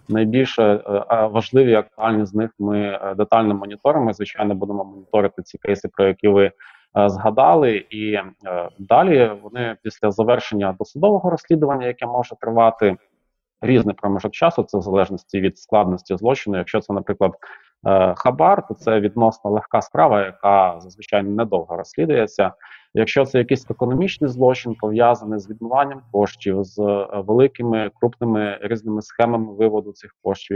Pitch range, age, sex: 100-115 Hz, 30-49, male